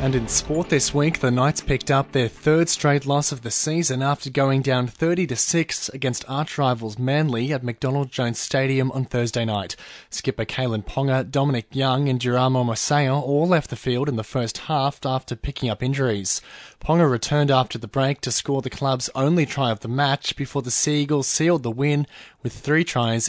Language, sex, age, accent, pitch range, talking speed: English, male, 20-39, Australian, 125-145 Hz, 190 wpm